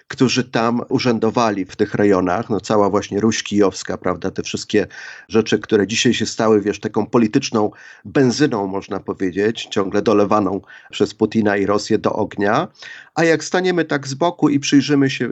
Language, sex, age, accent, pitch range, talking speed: Polish, male, 40-59, native, 105-135 Hz, 165 wpm